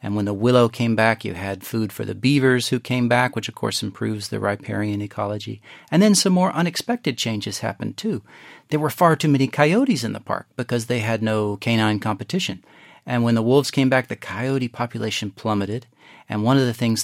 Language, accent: English, American